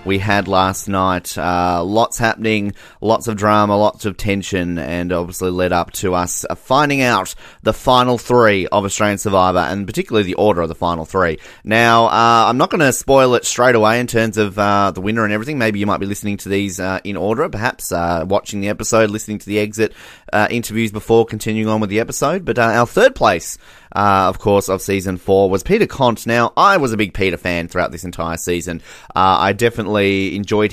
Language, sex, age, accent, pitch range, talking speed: English, male, 30-49, Australian, 95-115 Hz, 215 wpm